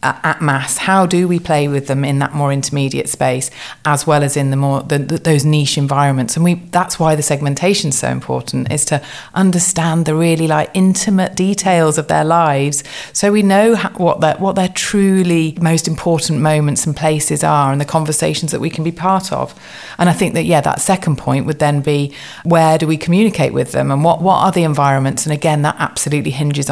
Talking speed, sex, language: 215 wpm, female, English